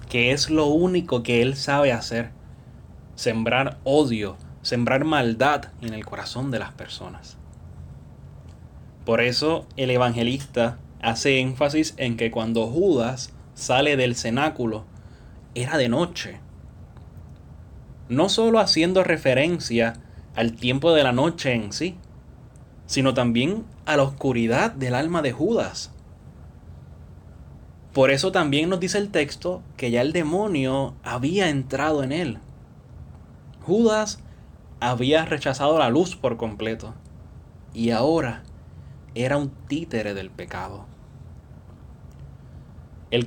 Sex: male